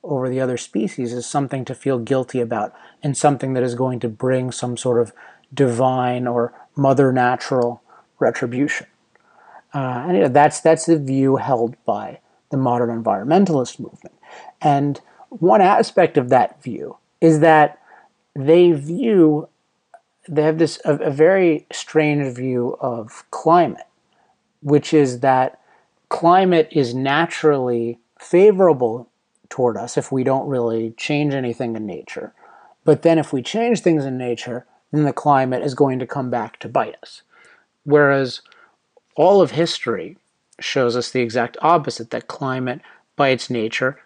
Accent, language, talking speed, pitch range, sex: American, English, 150 wpm, 125-150 Hz, male